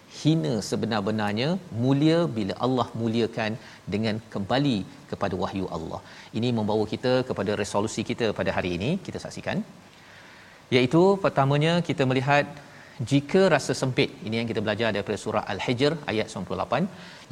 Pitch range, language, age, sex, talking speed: 105-140 Hz, Malayalam, 40-59, male, 130 wpm